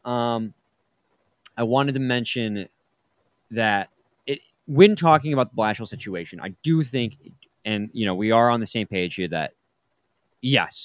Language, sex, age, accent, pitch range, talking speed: English, male, 20-39, American, 110-155 Hz, 155 wpm